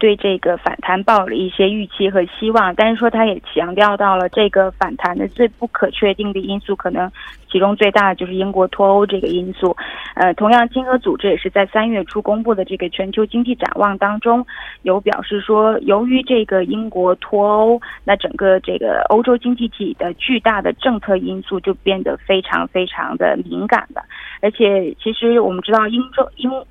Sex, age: female, 20-39